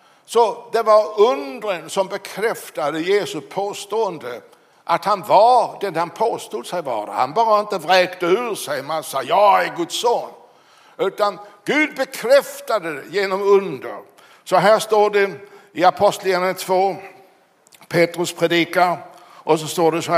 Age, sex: 60-79, male